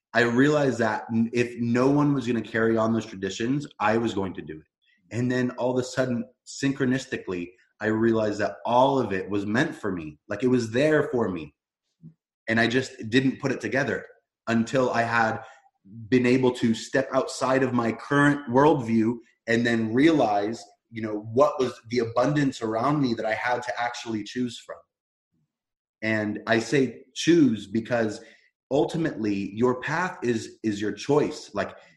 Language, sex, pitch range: English, male, 110-135 Hz